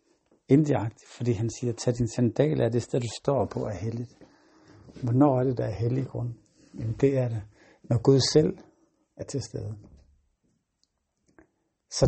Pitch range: 115-135 Hz